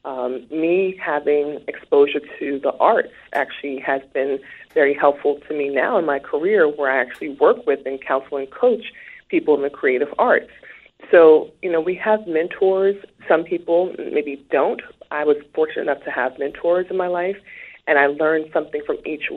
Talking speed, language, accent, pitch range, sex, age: 180 wpm, English, American, 140-190 Hz, female, 30-49